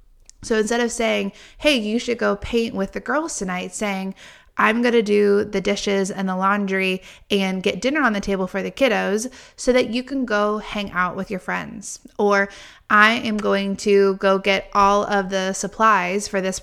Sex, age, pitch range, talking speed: female, 20-39, 190-220 Hz, 200 wpm